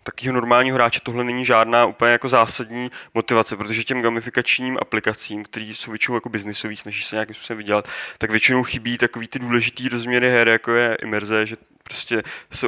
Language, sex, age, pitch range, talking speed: Czech, male, 20-39, 110-130 Hz, 180 wpm